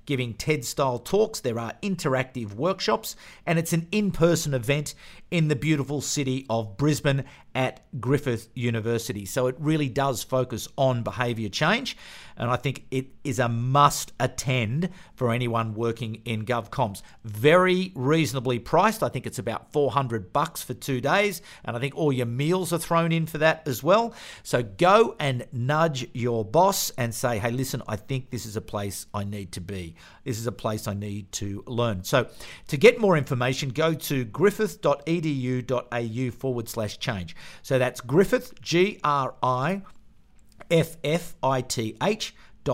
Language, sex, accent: English, male, Australian